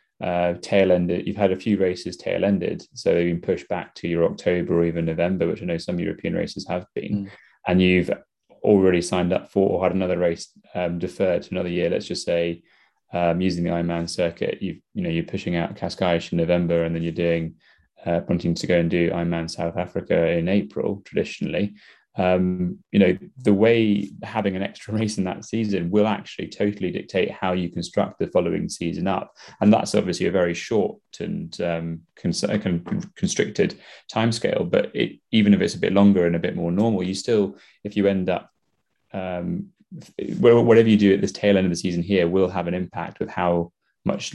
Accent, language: British, English